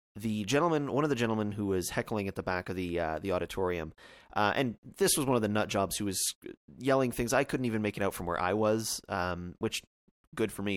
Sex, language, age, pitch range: male, English, 30-49, 95-120 Hz